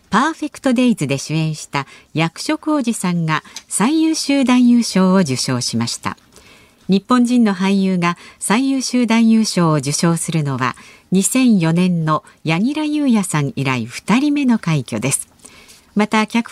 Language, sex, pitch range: Japanese, female, 160-235 Hz